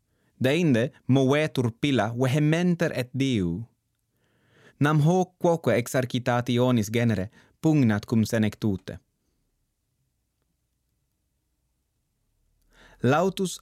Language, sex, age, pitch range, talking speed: English, male, 30-49, 110-140 Hz, 65 wpm